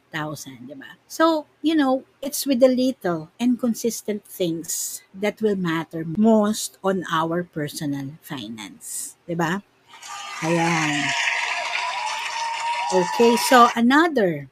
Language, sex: Filipino, female